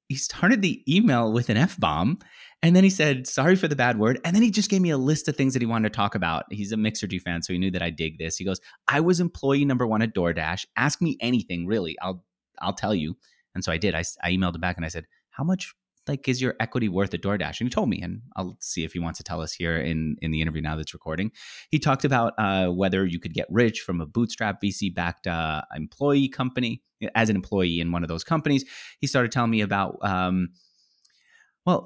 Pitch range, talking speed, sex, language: 85-120 Hz, 255 wpm, male, English